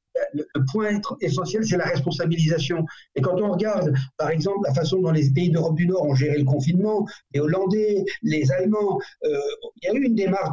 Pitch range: 155-210 Hz